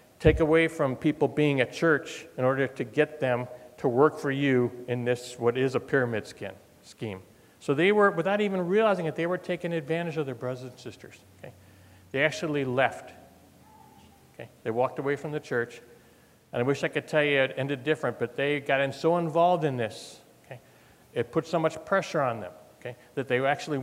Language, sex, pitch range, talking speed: English, male, 130-170 Hz, 205 wpm